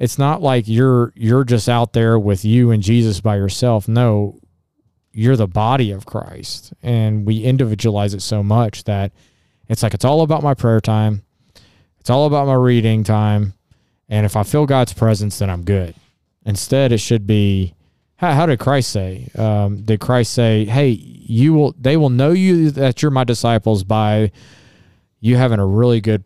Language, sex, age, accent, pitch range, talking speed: English, male, 20-39, American, 105-125 Hz, 185 wpm